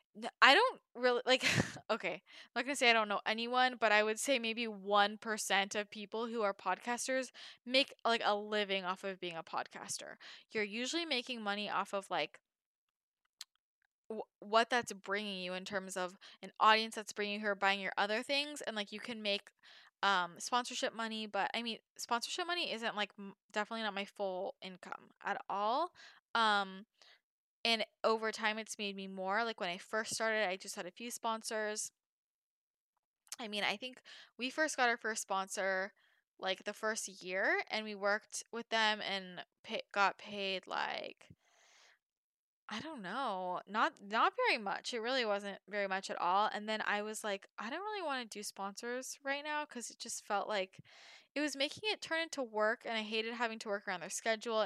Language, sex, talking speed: English, female, 190 wpm